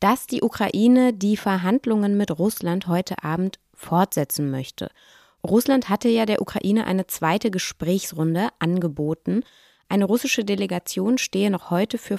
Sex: female